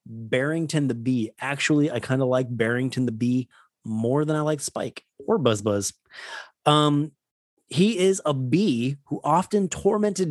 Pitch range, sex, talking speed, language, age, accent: 125-175 Hz, male, 155 wpm, English, 30-49, American